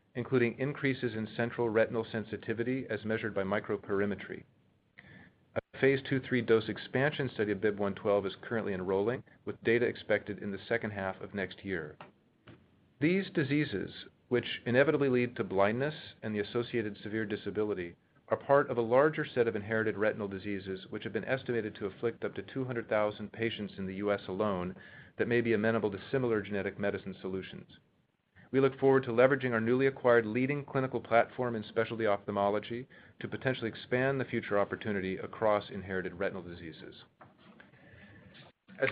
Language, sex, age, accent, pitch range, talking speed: English, male, 40-59, American, 105-130 Hz, 160 wpm